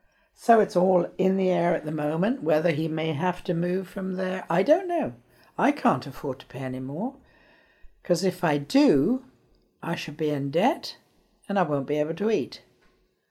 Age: 60-79